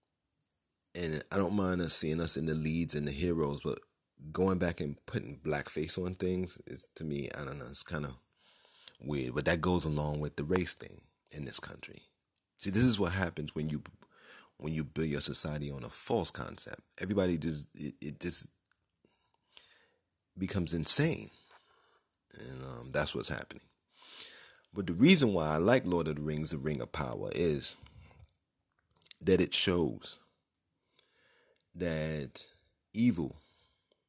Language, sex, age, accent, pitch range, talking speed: English, male, 30-49, American, 75-90 Hz, 155 wpm